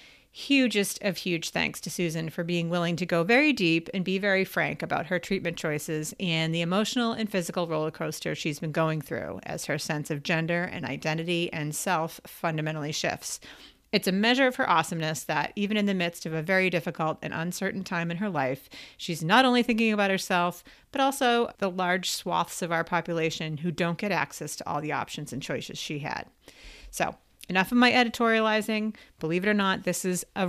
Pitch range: 160-205 Hz